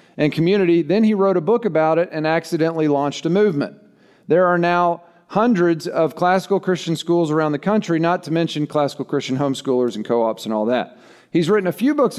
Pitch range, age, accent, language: 140-185 Hz, 40-59, American, English